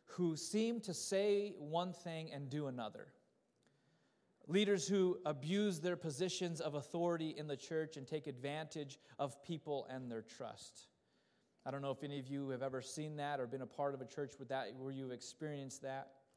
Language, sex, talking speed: English, male, 180 wpm